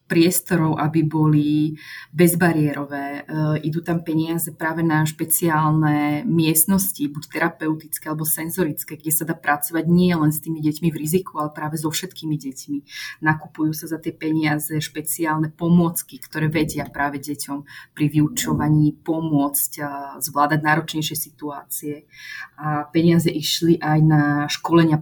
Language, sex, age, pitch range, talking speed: Slovak, female, 20-39, 155-175 Hz, 130 wpm